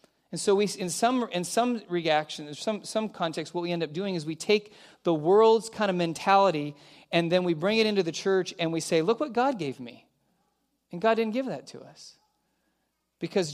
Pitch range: 145-185 Hz